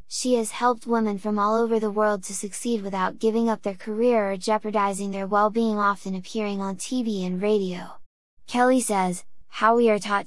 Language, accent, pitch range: English, American, 200-230 Hz